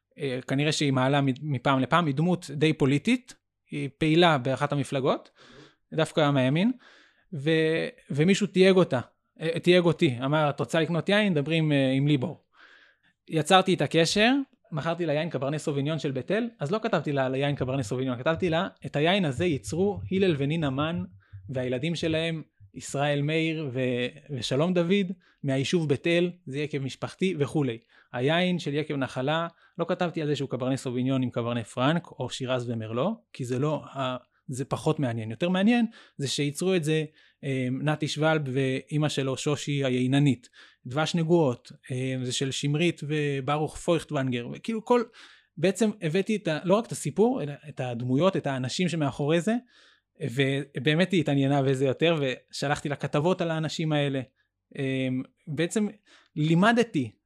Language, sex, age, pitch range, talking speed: Hebrew, male, 20-39, 135-170 Hz, 150 wpm